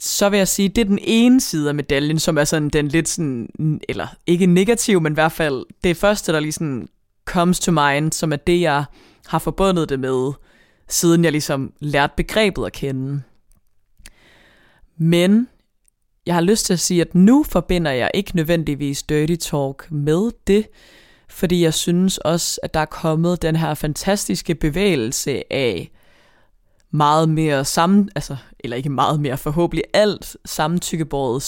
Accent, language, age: native, Danish, 20-39